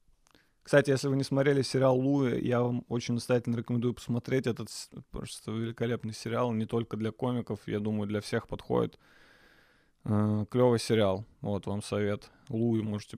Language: Russian